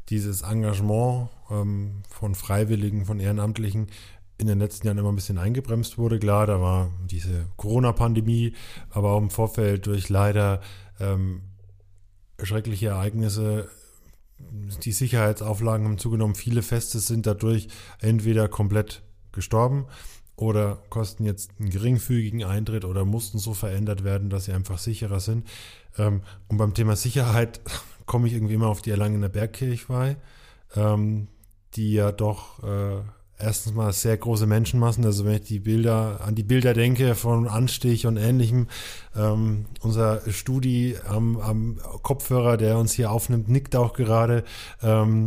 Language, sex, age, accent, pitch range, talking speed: German, male, 10-29, German, 100-115 Hz, 140 wpm